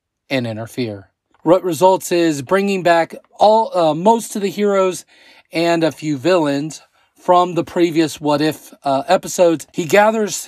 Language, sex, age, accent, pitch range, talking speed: English, male, 30-49, American, 130-180 Hz, 150 wpm